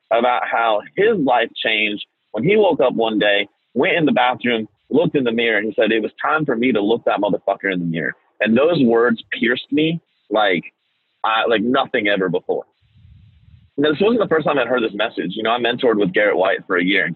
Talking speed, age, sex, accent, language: 230 wpm, 30-49, male, American, English